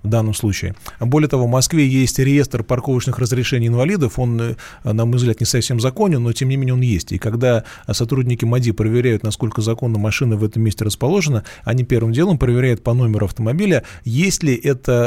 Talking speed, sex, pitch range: 185 wpm, male, 110-130 Hz